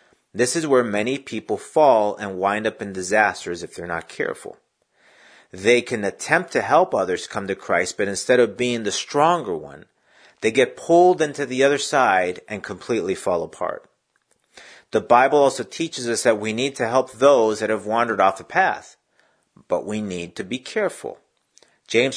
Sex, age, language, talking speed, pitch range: male, 40-59, English, 180 wpm, 110-165 Hz